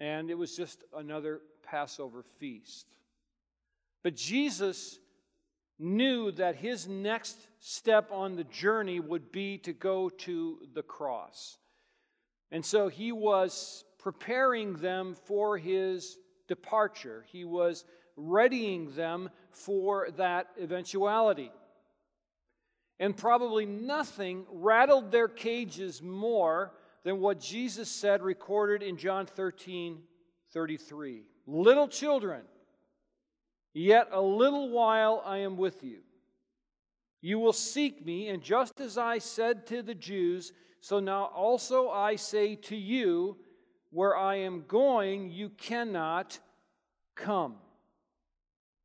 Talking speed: 110 wpm